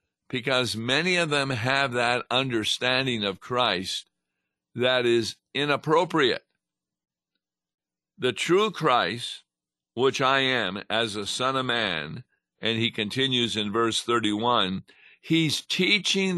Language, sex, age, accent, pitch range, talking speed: English, male, 50-69, American, 110-140 Hz, 115 wpm